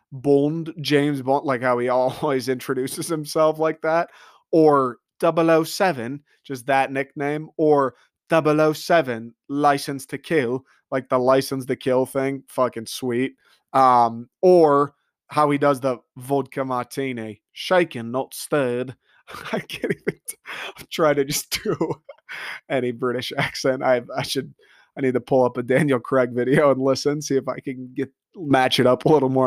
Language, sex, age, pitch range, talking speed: English, male, 30-49, 130-145 Hz, 155 wpm